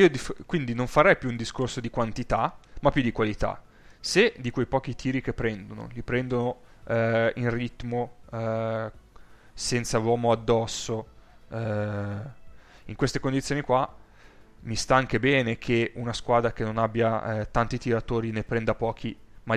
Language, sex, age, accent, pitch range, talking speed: Italian, male, 20-39, native, 110-125 Hz, 155 wpm